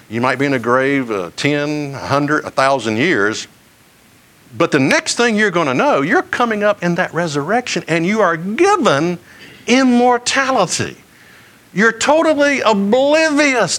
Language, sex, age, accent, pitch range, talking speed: English, male, 60-79, American, 130-210 Hz, 145 wpm